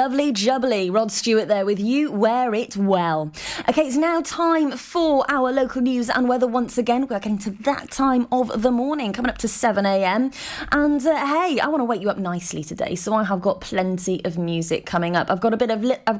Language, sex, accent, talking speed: English, female, British, 230 wpm